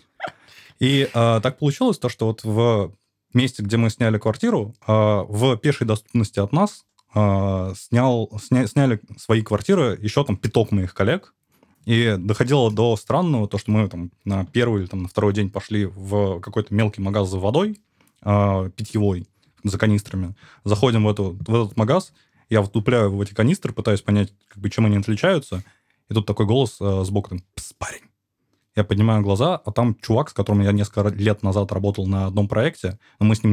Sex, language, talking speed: male, Russian, 170 wpm